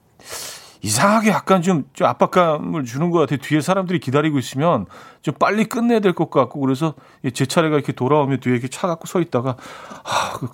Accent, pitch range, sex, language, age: native, 120-175 Hz, male, Korean, 40-59